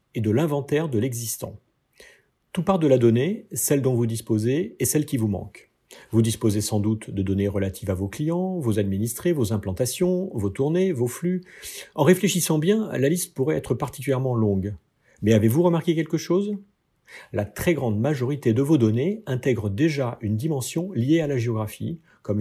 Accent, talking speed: French, 180 wpm